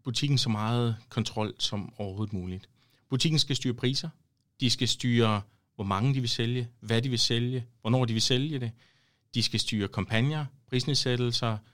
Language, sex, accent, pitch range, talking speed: Danish, male, native, 105-130 Hz, 170 wpm